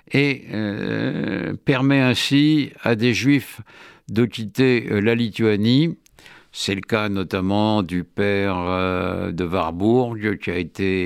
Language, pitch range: French, 95-125 Hz